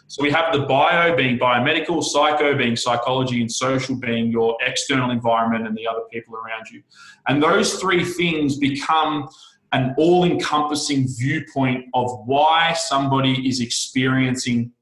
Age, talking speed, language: 20-39, 140 wpm, English